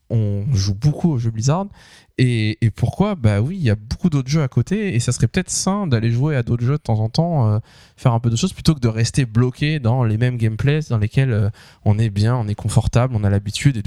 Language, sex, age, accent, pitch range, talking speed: French, male, 20-39, French, 105-130 Hz, 265 wpm